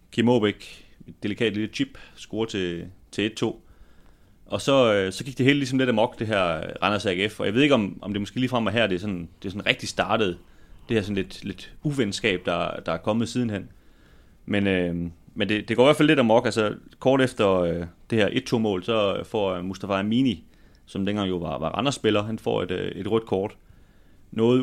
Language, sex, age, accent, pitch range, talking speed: Danish, male, 30-49, native, 90-120 Hz, 225 wpm